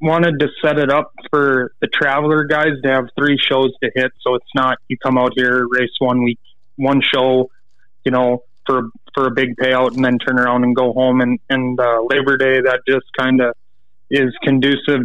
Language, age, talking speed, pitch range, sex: English, 20-39, 205 wpm, 125-140 Hz, male